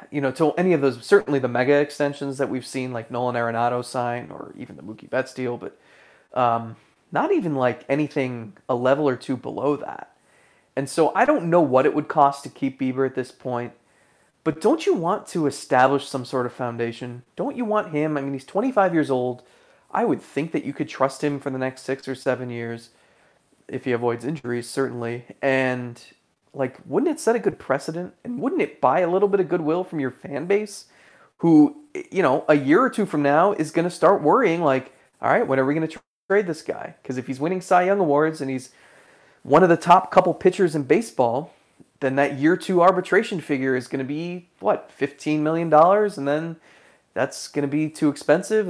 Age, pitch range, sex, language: 30-49, 130-170 Hz, male, English